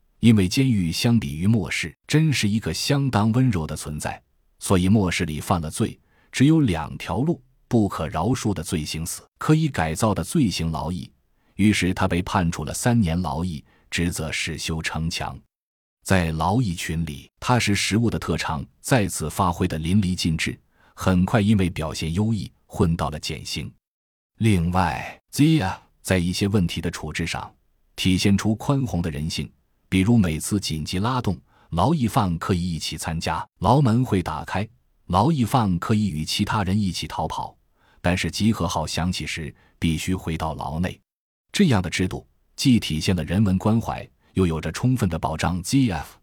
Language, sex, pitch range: Chinese, male, 80-110 Hz